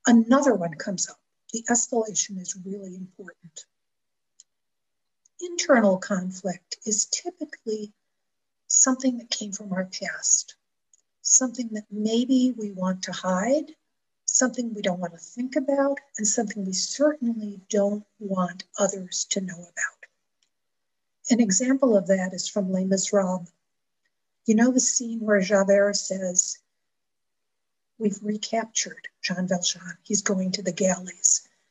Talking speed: 125 wpm